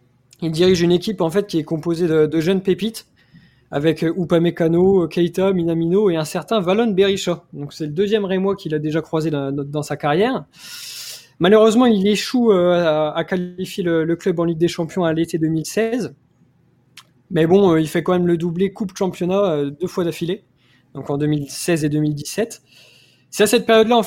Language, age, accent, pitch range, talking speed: French, 20-39, French, 155-195 Hz, 195 wpm